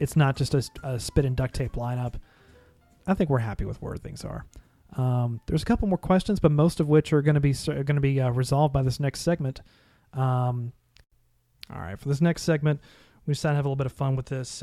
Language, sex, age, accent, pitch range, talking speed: English, male, 40-59, American, 120-145 Hz, 240 wpm